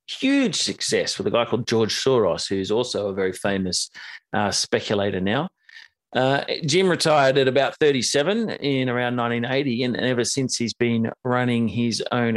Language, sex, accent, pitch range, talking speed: English, male, Australian, 115-150 Hz, 160 wpm